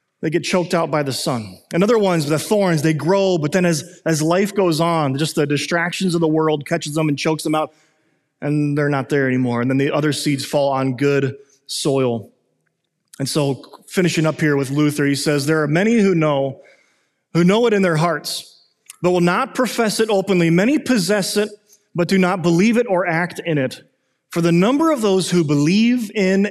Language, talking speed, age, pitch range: English, 210 wpm, 30-49, 145-195 Hz